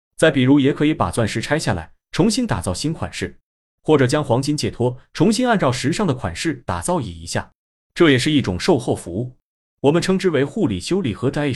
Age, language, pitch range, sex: 30-49, Chinese, 105-150 Hz, male